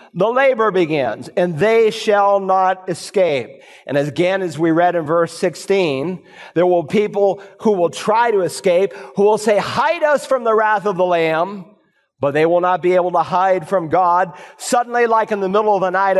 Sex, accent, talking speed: male, American, 200 wpm